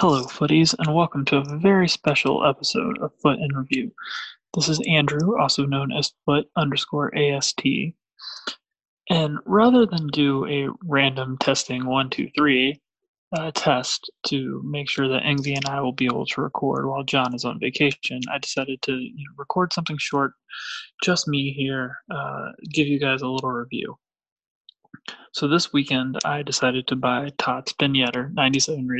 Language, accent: English, American